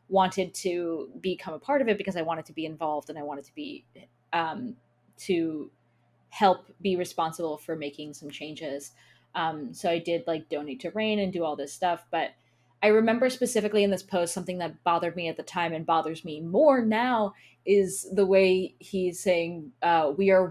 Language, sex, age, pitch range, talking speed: English, female, 20-39, 165-200 Hz, 195 wpm